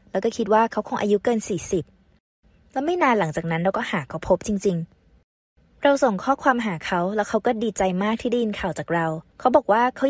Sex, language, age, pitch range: female, Thai, 20-39, 180-230 Hz